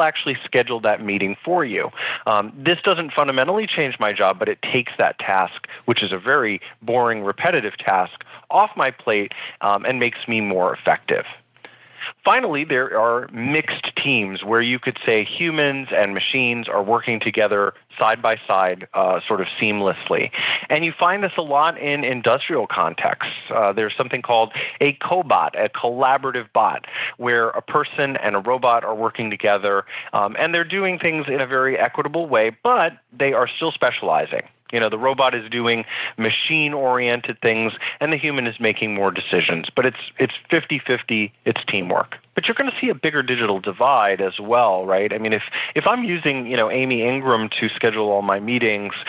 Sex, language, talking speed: male, English, 180 wpm